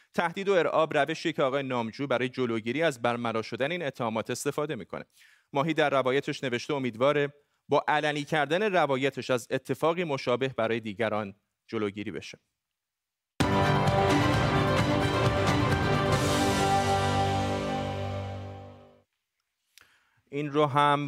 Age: 30-49